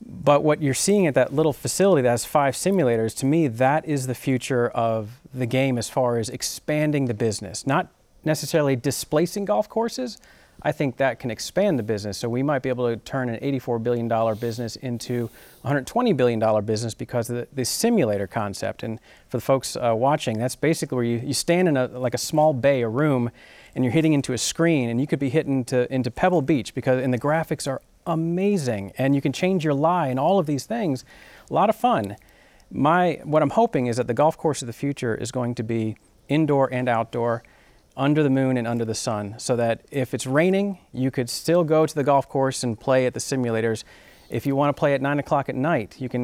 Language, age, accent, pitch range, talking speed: English, 30-49, American, 120-150 Hz, 220 wpm